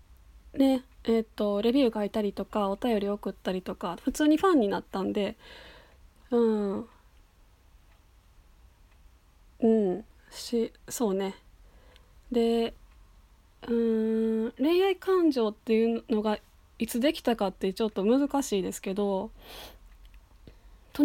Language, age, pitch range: Japanese, 20-39, 170-250 Hz